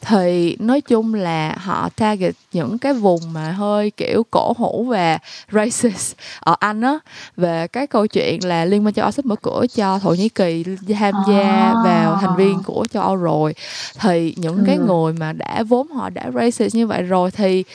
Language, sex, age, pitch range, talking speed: Vietnamese, female, 20-39, 180-230 Hz, 195 wpm